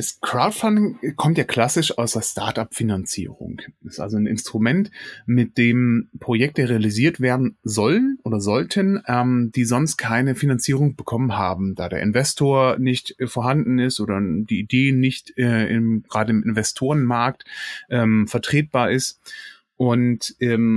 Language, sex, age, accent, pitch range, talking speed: German, male, 30-49, German, 110-140 Hz, 140 wpm